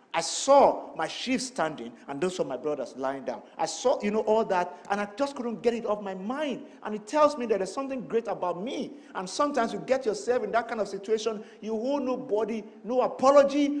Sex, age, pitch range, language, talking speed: male, 50-69, 185-255 Hz, English, 225 wpm